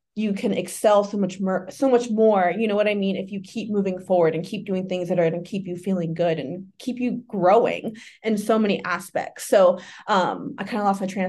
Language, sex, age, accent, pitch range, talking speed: English, female, 20-39, American, 185-225 Hz, 250 wpm